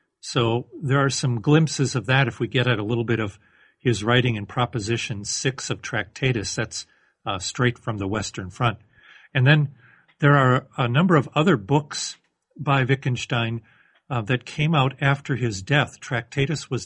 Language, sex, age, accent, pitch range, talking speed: English, male, 50-69, American, 115-135 Hz, 175 wpm